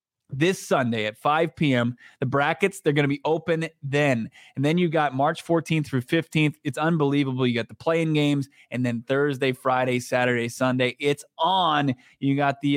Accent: American